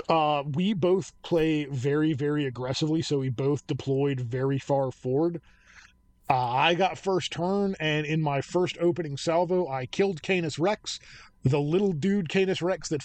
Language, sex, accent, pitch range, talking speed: English, male, American, 135-175 Hz, 160 wpm